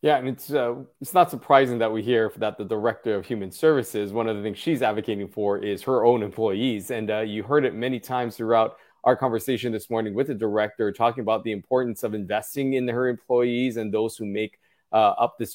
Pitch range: 110-125 Hz